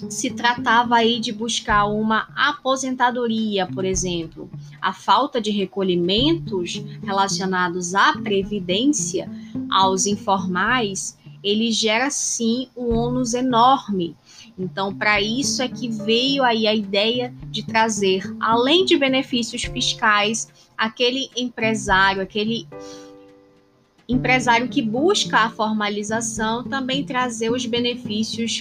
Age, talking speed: 20-39, 105 wpm